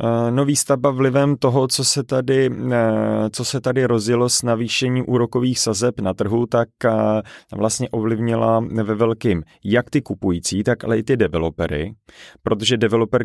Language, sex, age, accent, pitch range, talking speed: Czech, male, 30-49, native, 100-115 Hz, 135 wpm